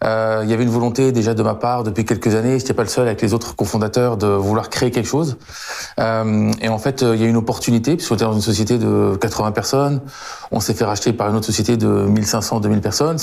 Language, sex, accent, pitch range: French, male, French, 105-120 Hz